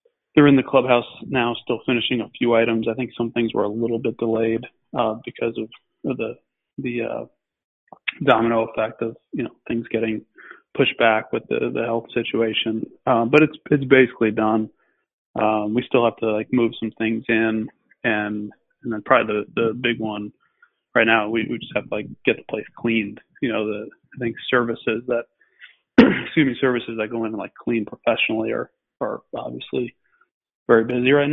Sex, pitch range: male, 110-125 Hz